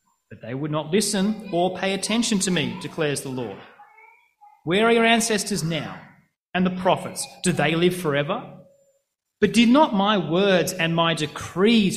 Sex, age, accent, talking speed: male, 30-49, Australian, 160 wpm